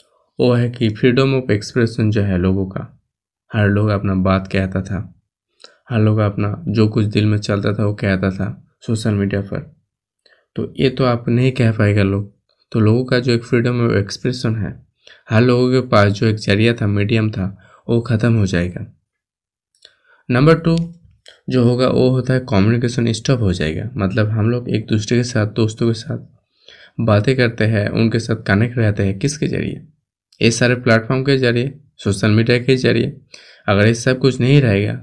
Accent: native